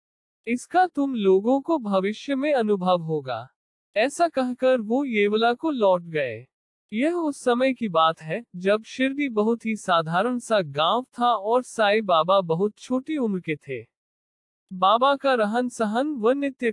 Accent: native